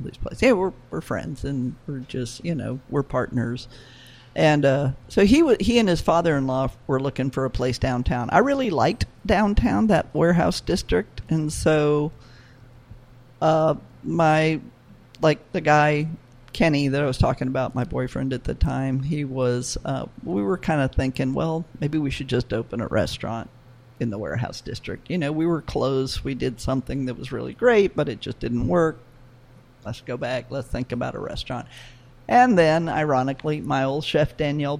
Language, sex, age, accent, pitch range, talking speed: English, male, 50-69, American, 125-155 Hz, 180 wpm